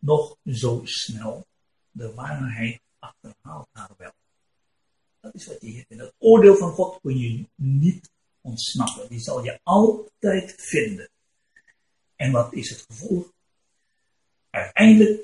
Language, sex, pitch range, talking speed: Turkish, male, 125-205 Hz, 130 wpm